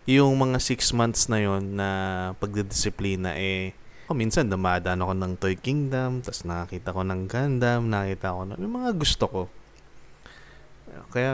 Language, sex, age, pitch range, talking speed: Filipino, male, 20-39, 100-125 Hz, 155 wpm